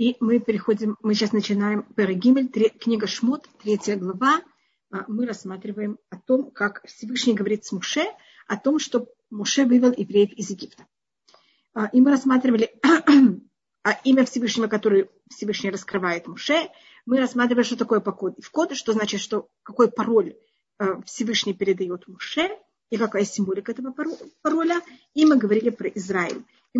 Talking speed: 140 wpm